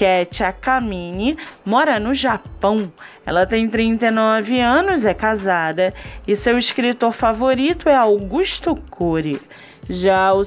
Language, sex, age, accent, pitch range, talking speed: Portuguese, female, 20-39, Brazilian, 195-270 Hz, 115 wpm